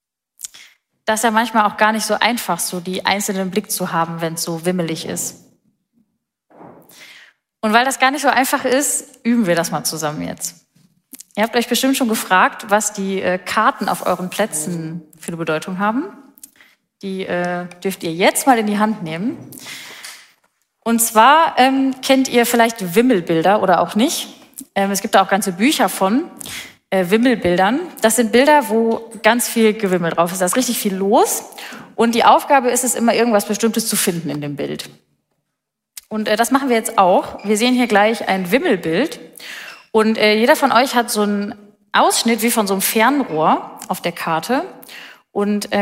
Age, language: 30-49, German